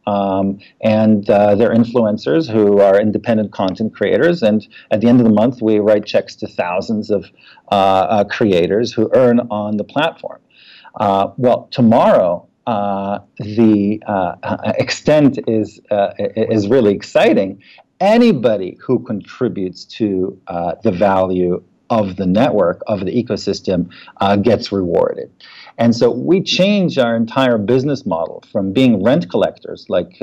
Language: English